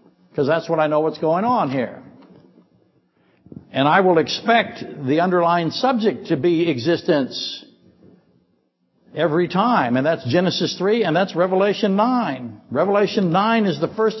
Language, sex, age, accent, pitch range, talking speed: English, male, 60-79, American, 145-215 Hz, 145 wpm